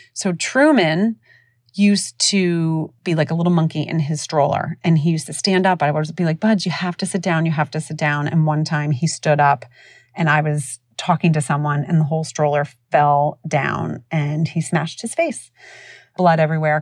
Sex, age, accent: female, 30-49, American